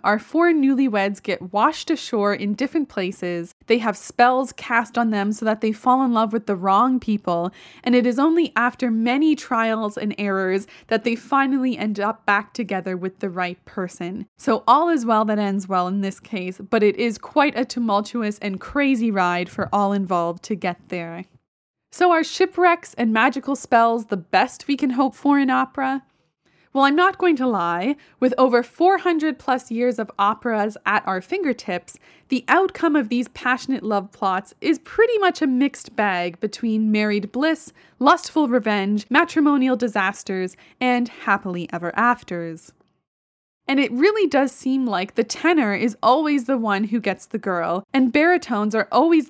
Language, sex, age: English, female, 20-39